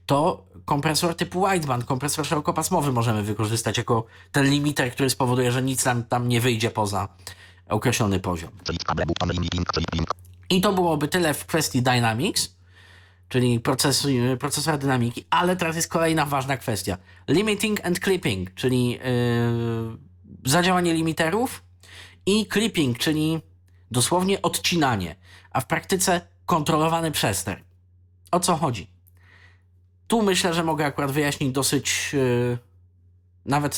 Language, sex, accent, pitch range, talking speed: Polish, male, native, 90-150 Hz, 115 wpm